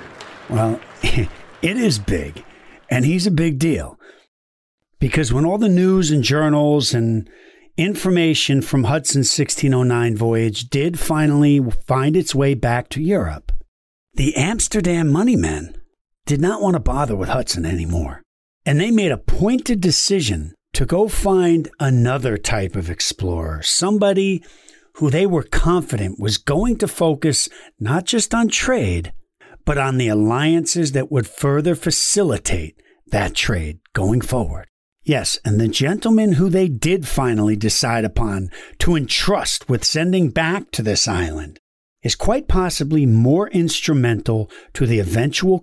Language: English